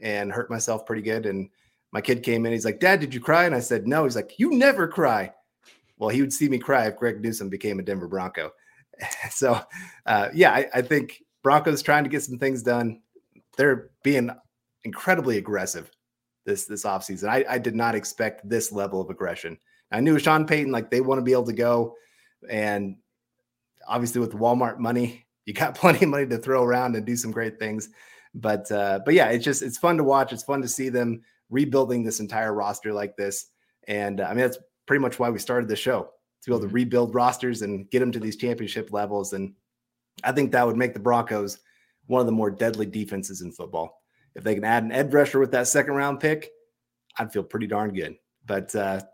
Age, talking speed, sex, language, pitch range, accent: 30-49, 215 wpm, male, English, 110-140 Hz, American